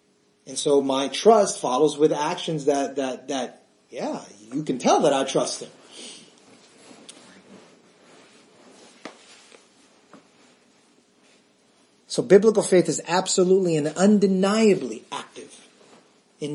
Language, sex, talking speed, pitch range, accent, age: English, male, 100 wpm, 130-170 Hz, American, 30-49